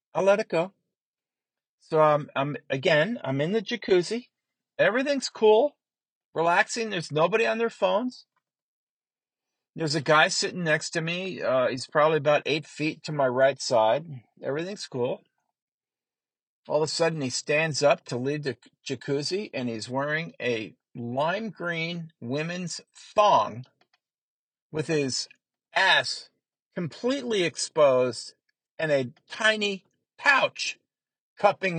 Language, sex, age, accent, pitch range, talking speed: English, male, 50-69, American, 140-215 Hz, 130 wpm